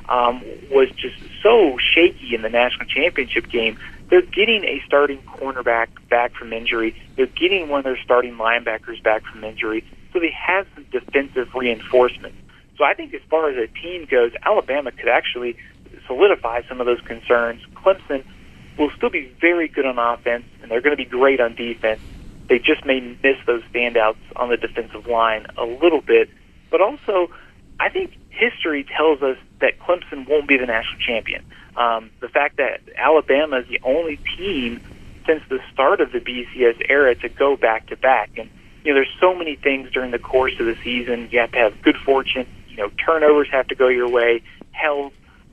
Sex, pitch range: male, 115-155 Hz